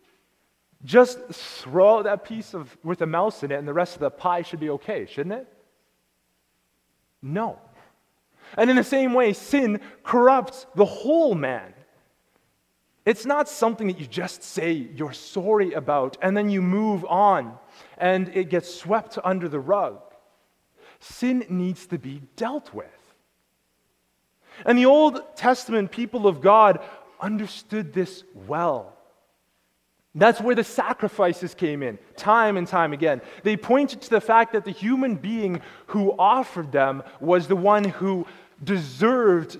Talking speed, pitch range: 145 wpm, 155-220 Hz